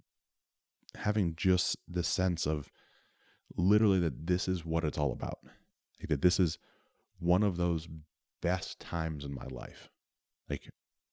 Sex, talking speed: male, 140 wpm